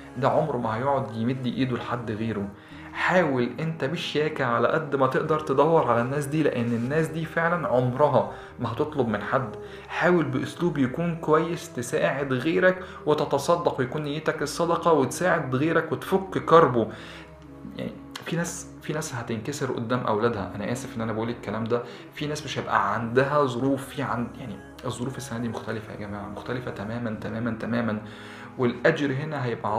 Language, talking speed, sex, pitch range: Arabic, 155 wpm, male, 115-145 Hz